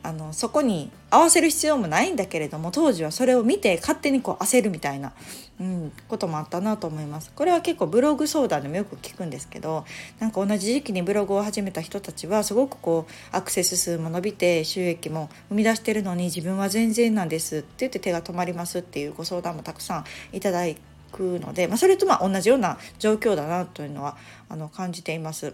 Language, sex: Japanese, female